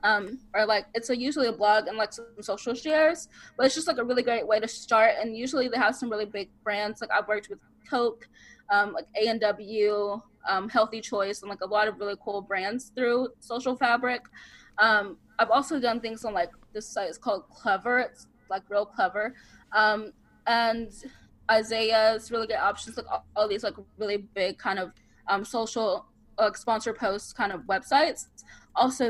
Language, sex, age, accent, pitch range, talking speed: English, female, 10-29, American, 205-240 Hz, 190 wpm